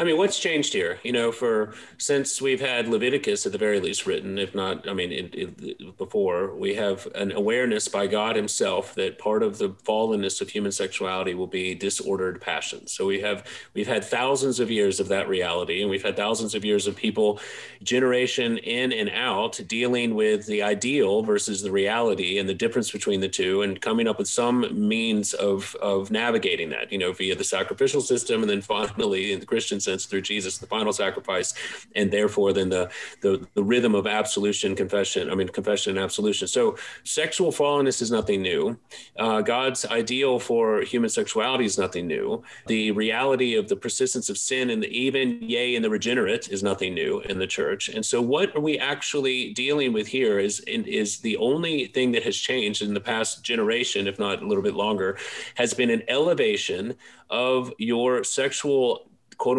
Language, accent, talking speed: English, American, 190 wpm